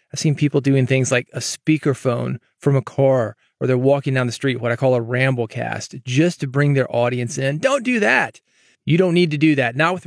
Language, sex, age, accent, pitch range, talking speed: English, male, 30-49, American, 130-155 Hz, 230 wpm